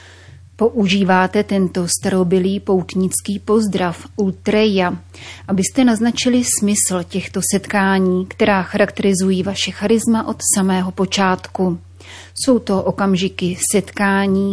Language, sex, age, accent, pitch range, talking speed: Czech, female, 30-49, native, 185-205 Hz, 90 wpm